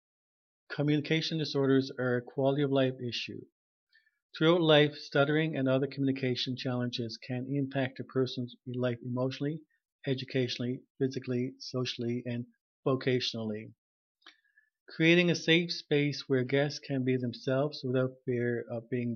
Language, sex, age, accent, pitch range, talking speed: English, male, 50-69, American, 130-155 Hz, 115 wpm